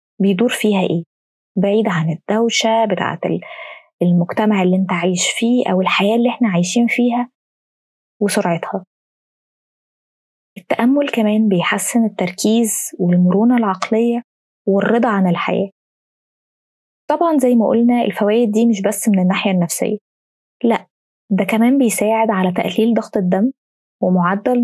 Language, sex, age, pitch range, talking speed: Arabic, female, 20-39, 200-245 Hz, 115 wpm